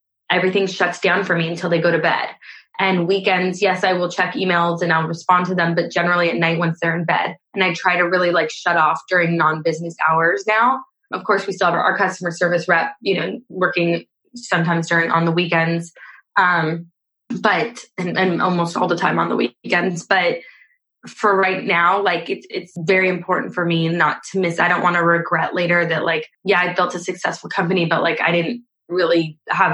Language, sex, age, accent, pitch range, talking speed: English, female, 20-39, American, 165-190 Hz, 210 wpm